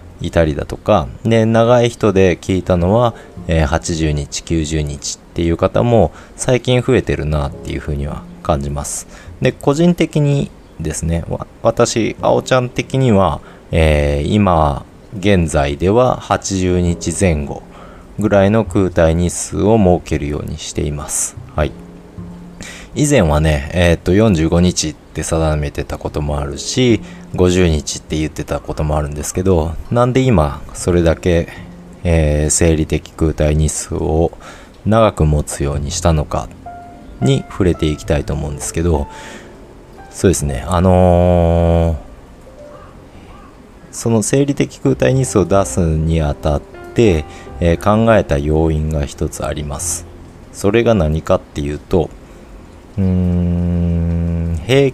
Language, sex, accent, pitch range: Japanese, male, native, 75-100 Hz